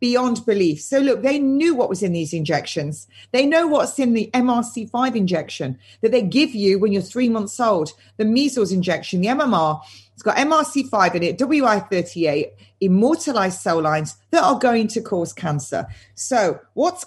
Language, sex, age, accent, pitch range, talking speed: English, female, 40-59, British, 175-265 Hz, 170 wpm